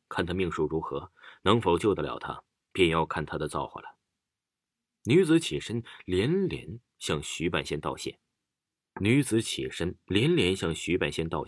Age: 30-49